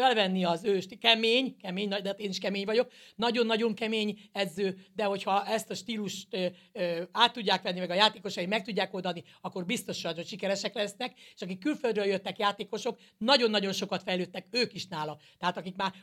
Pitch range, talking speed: 185-220 Hz, 185 wpm